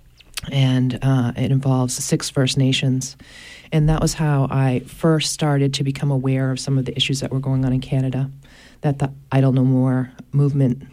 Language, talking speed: English, 185 wpm